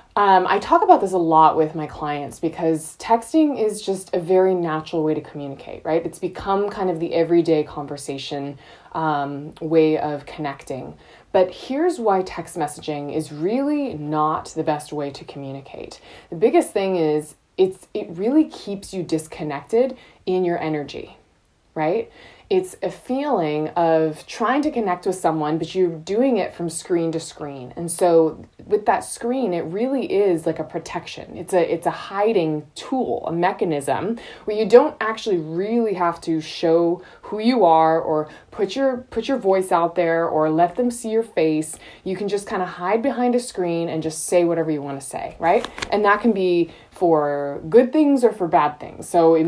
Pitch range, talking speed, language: 155-205 Hz, 185 wpm, English